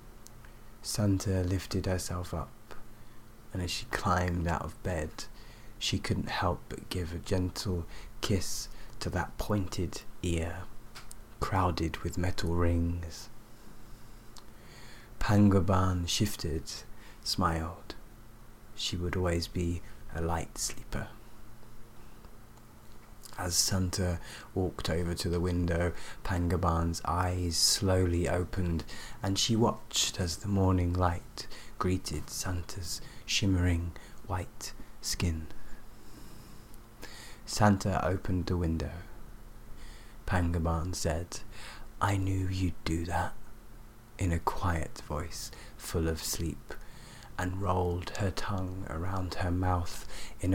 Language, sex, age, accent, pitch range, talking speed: English, male, 30-49, British, 90-110 Hz, 100 wpm